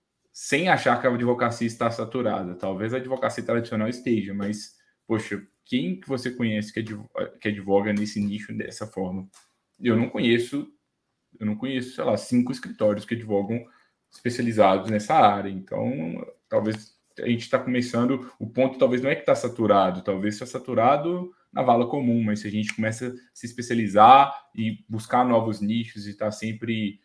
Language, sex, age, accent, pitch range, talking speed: Portuguese, male, 10-29, Brazilian, 110-135 Hz, 170 wpm